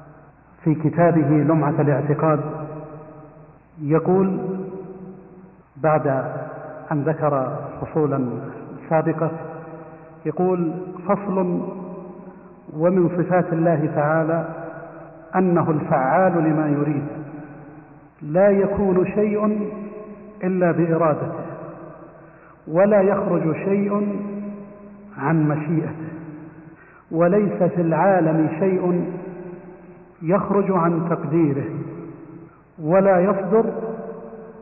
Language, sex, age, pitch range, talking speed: Arabic, male, 50-69, 155-185 Hz, 70 wpm